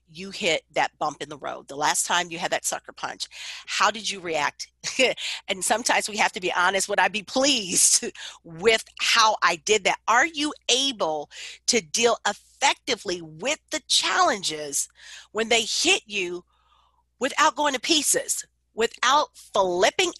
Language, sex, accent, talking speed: English, female, American, 160 wpm